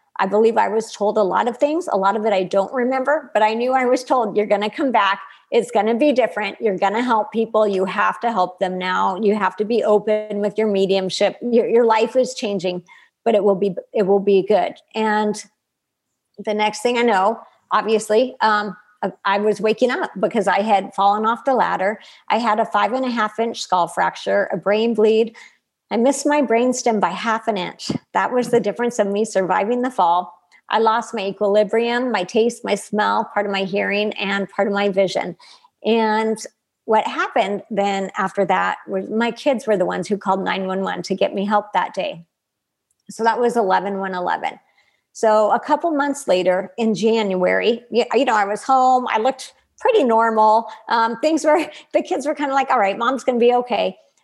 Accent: American